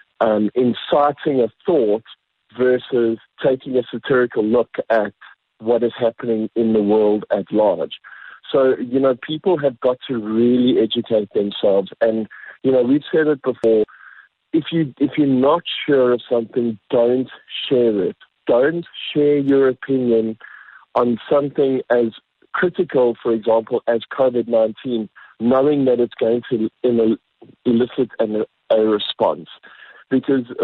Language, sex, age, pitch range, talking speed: English, male, 50-69, 115-135 Hz, 135 wpm